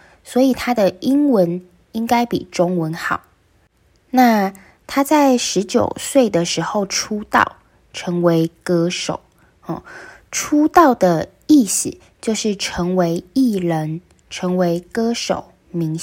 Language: Chinese